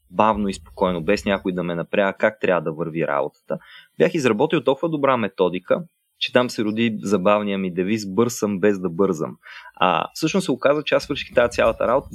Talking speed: 190 wpm